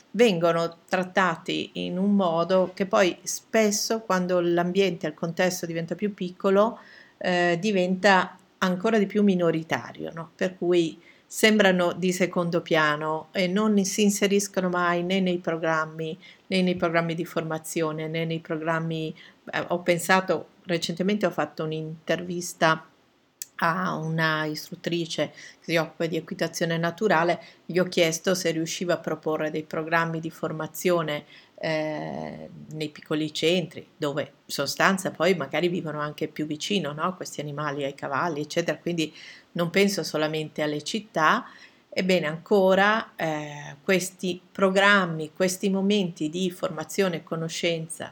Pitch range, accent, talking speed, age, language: 160-185 Hz, native, 135 wpm, 50-69, Italian